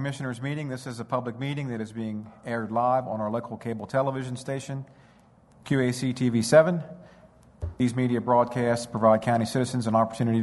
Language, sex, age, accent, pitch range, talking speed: English, male, 50-69, American, 110-130 Hz, 165 wpm